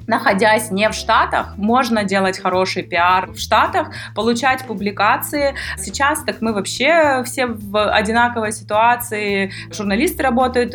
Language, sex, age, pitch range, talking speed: Russian, female, 20-39, 190-225 Hz, 125 wpm